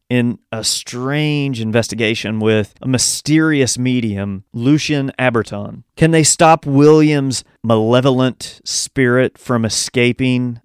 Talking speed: 100 wpm